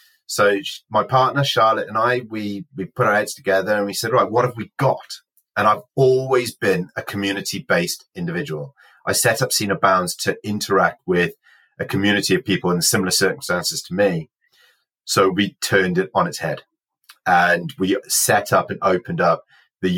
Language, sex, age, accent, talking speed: English, male, 30-49, British, 175 wpm